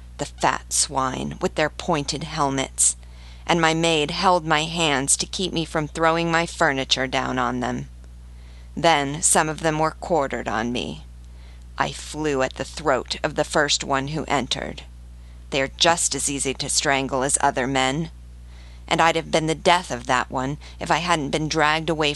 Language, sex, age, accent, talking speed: English, female, 40-59, American, 180 wpm